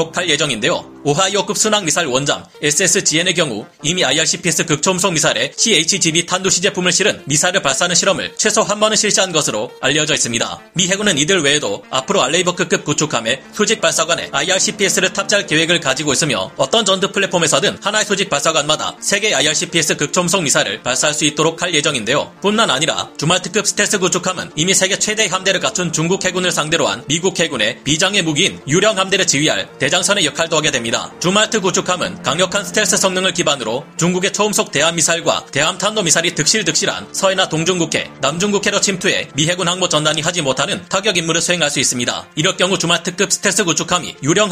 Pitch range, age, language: 155-195 Hz, 30-49, Korean